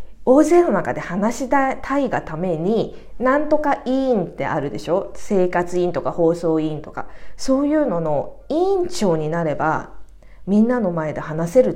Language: Japanese